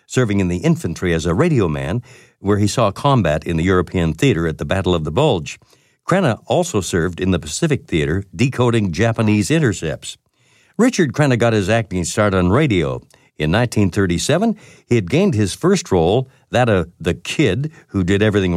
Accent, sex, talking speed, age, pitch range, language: American, male, 180 wpm, 60-79, 90-130 Hz, English